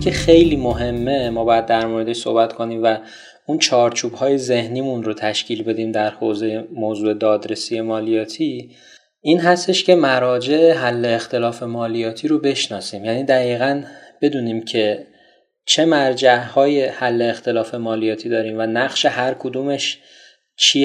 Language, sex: Persian, male